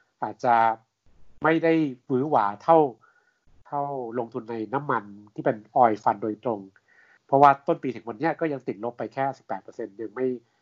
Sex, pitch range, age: male, 110-140 Hz, 60-79